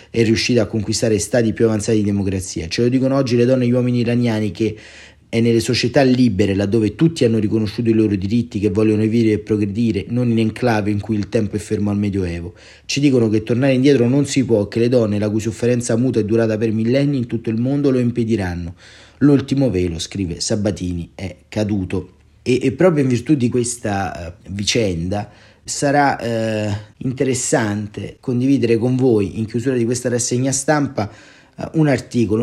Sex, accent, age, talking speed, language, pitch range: male, native, 30-49, 185 wpm, Italian, 105-125 Hz